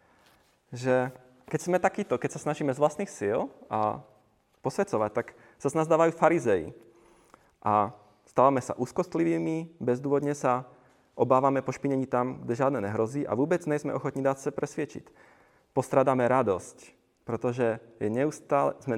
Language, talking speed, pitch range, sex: Czech, 125 wpm, 115-140 Hz, male